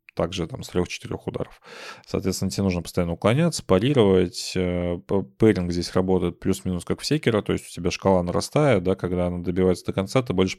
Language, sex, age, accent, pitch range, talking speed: Russian, male, 20-39, native, 90-105 Hz, 180 wpm